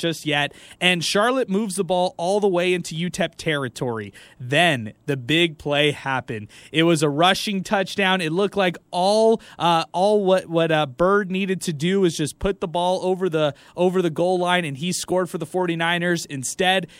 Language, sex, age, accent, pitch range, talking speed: English, male, 20-39, American, 165-205 Hz, 190 wpm